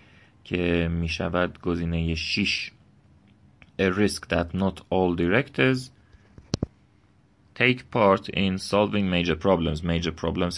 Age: 30-49